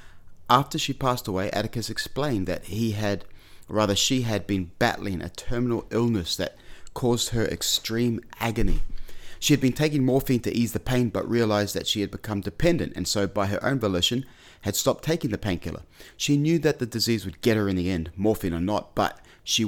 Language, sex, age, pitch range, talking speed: English, male, 30-49, 90-115 Hz, 200 wpm